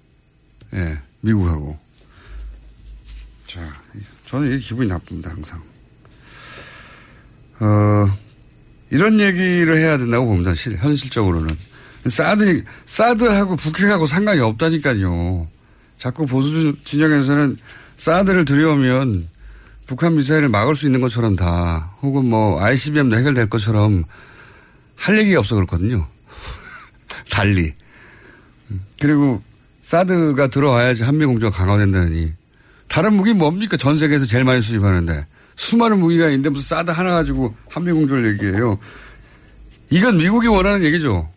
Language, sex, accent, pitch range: Korean, male, native, 100-155 Hz